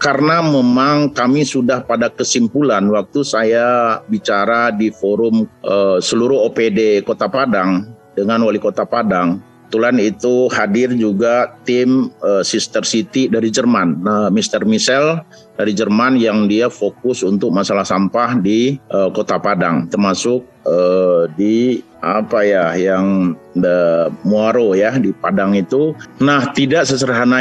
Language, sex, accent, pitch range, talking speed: Indonesian, male, native, 110-135 Hz, 130 wpm